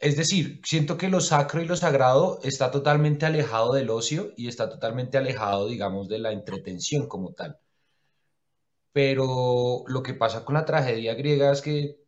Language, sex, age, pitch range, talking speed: Spanish, male, 20-39, 115-145 Hz, 170 wpm